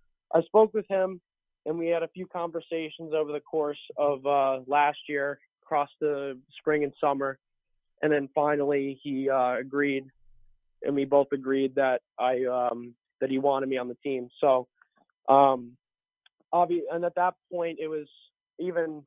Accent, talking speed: American, 165 wpm